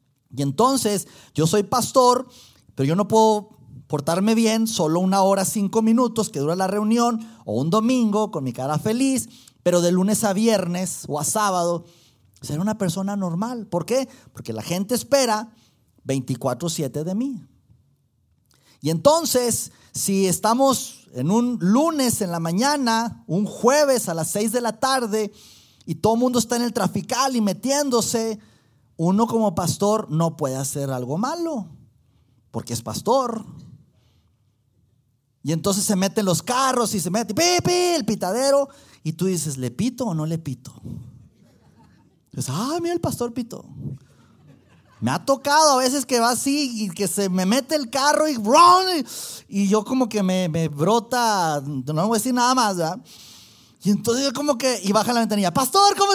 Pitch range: 150-245 Hz